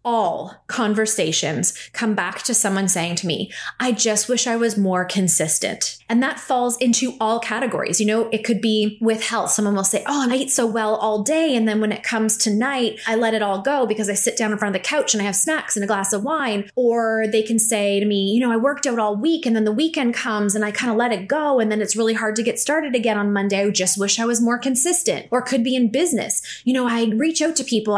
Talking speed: 265 wpm